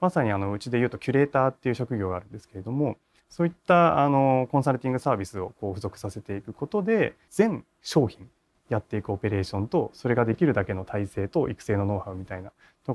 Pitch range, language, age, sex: 100-140 Hz, Japanese, 20-39, male